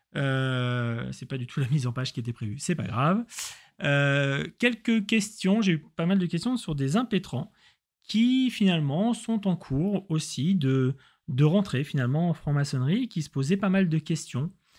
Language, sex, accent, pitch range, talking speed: French, male, French, 135-195 Hz, 185 wpm